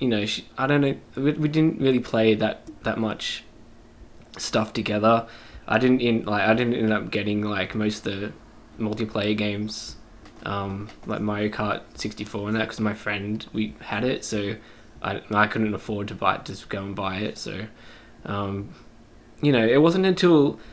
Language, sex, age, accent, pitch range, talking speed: English, male, 10-29, Australian, 100-115 Hz, 185 wpm